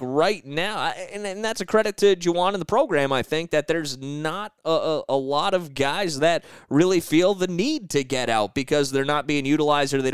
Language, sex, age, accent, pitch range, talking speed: English, male, 30-49, American, 125-155 Hz, 225 wpm